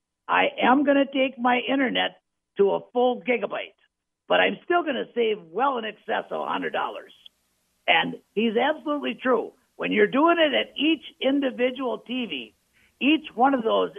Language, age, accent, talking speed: English, 50-69, American, 165 wpm